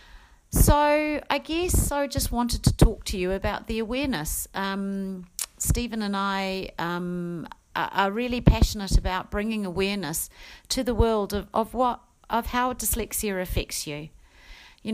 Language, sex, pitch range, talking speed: English, female, 180-240 Hz, 145 wpm